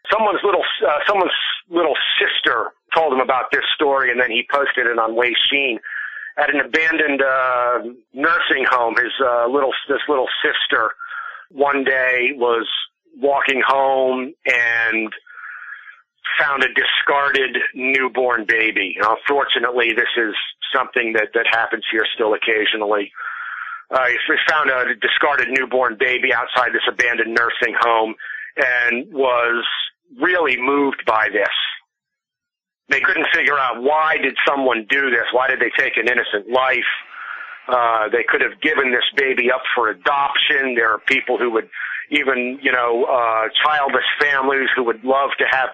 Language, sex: English, male